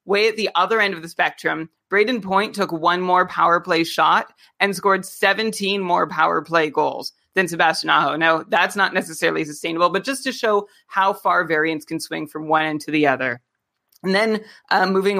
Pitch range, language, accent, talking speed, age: 165-205 Hz, English, American, 195 wpm, 30-49